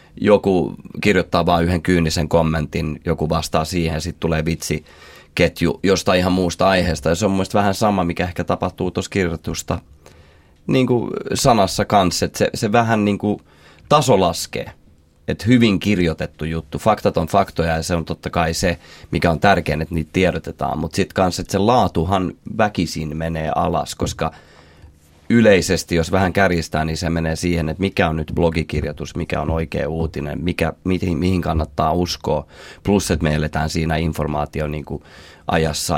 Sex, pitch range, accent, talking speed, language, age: male, 80-90 Hz, native, 160 wpm, Finnish, 30-49